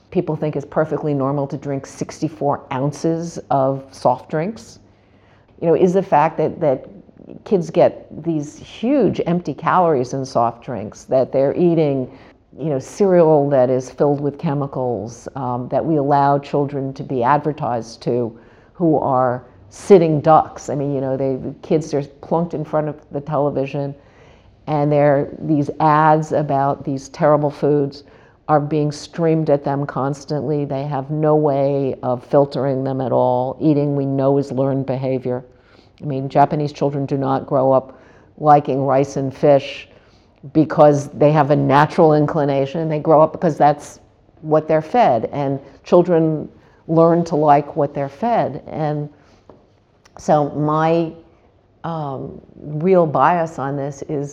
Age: 50-69